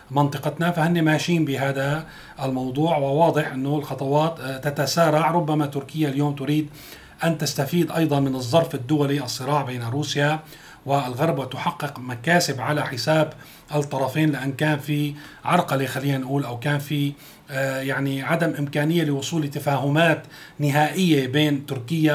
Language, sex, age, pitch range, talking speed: Arabic, male, 40-59, 135-160 Hz, 120 wpm